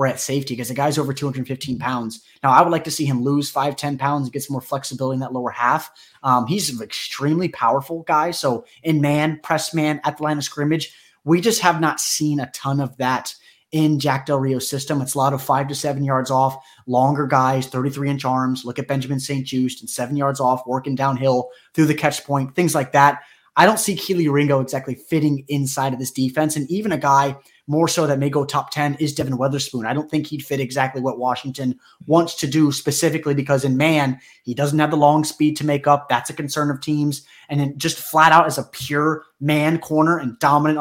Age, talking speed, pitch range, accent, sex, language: 20-39, 230 wpm, 135-155 Hz, American, male, English